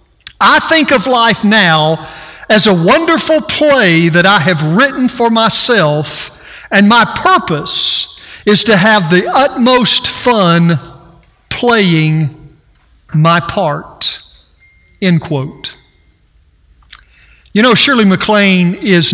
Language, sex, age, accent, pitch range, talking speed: English, male, 50-69, American, 170-235 Hz, 105 wpm